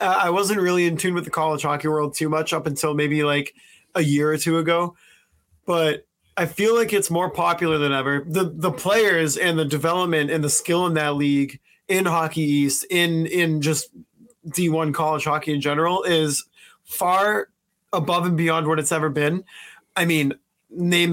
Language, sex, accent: English, male, American